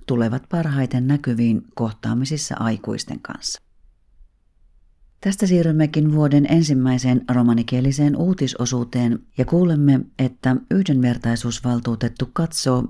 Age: 40-59